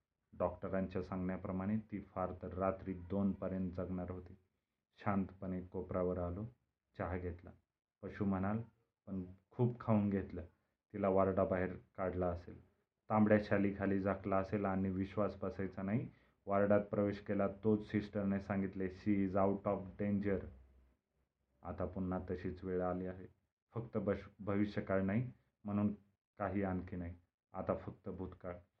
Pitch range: 95-105 Hz